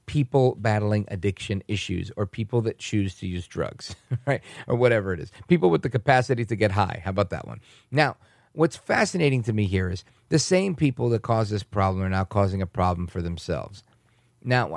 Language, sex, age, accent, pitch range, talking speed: English, male, 40-59, American, 95-125 Hz, 200 wpm